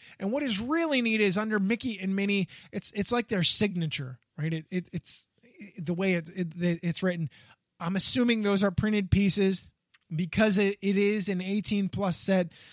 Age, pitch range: 20-39, 175-230 Hz